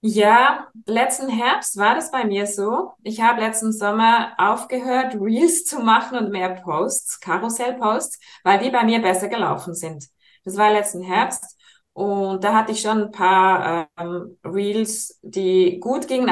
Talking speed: 160 wpm